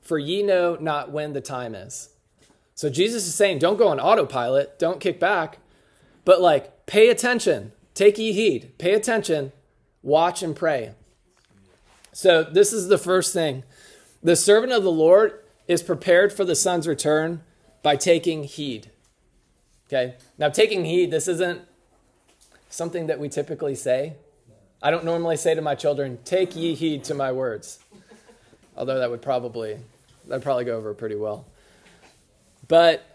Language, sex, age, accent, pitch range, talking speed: English, male, 20-39, American, 150-190 Hz, 160 wpm